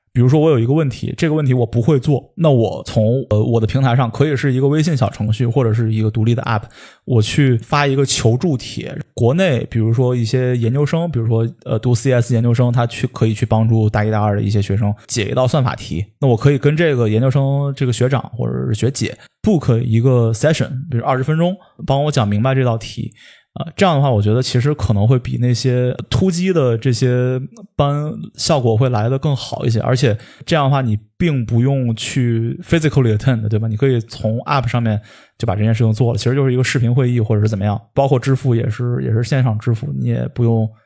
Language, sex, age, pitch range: Chinese, male, 20-39, 115-135 Hz